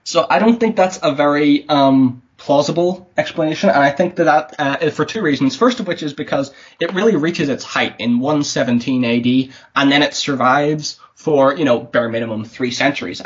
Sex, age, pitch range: male, 20-39, 130-170 Hz